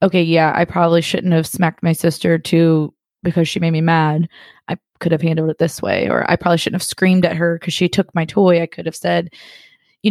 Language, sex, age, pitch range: English, female, 20-39, 165-190 Hz